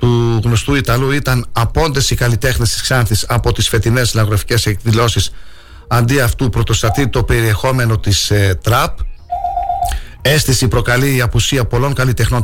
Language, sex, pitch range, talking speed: Greek, male, 105-125 Hz, 130 wpm